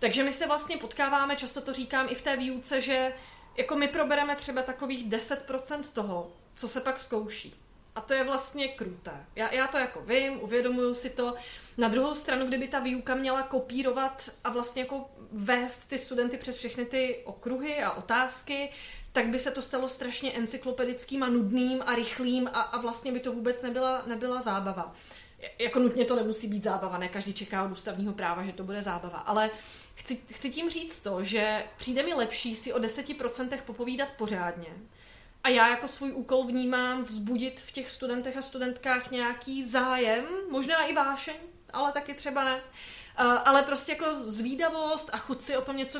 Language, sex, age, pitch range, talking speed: Czech, female, 30-49, 240-270 Hz, 185 wpm